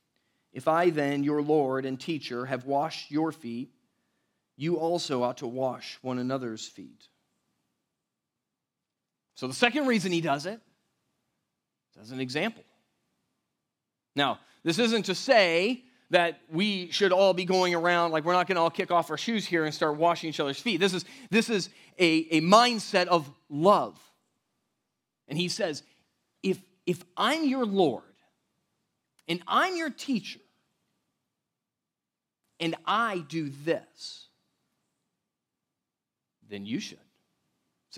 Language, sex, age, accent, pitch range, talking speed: English, male, 40-59, American, 155-215 Hz, 140 wpm